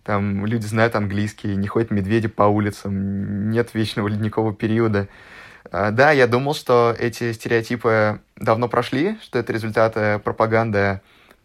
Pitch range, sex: 105-120 Hz, male